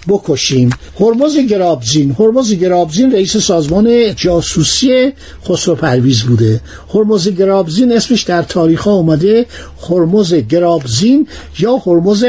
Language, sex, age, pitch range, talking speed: Persian, male, 60-79, 160-225 Hz, 105 wpm